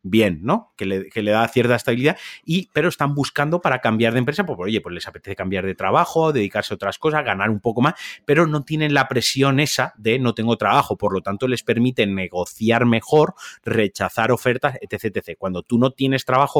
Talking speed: 215 wpm